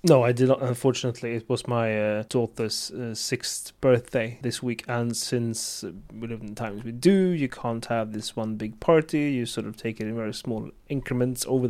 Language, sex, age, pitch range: English, male, 30-49, 115-140 Hz